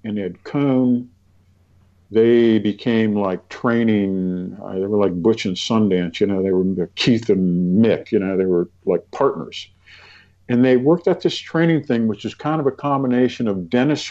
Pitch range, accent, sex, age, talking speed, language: 95-130 Hz, American, male, 50-69, 175 wpm, English